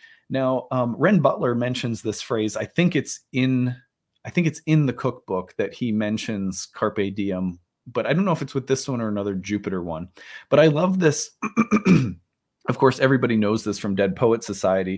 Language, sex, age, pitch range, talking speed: English, male, 30-49, 105-150 Hz, 190 wpm